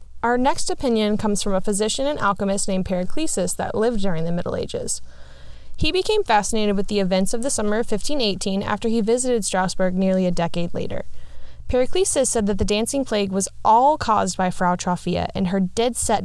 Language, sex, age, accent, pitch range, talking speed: English, female, 20-39, American, 185-240 Hz, 190 wpm